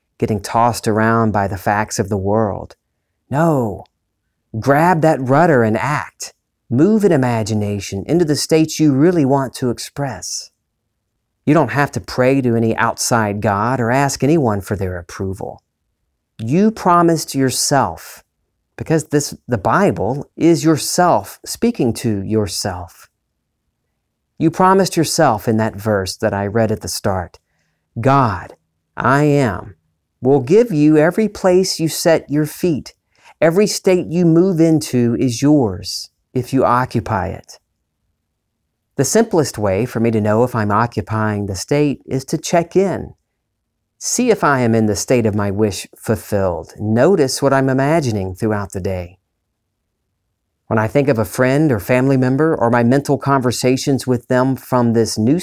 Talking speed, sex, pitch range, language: 150 wpm, male, 105-145 Hz, English